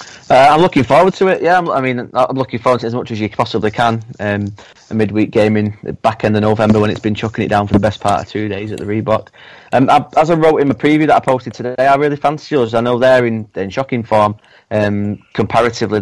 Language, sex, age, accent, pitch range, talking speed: English, male, 30-49, British, 105-125 Hz, 260 wpm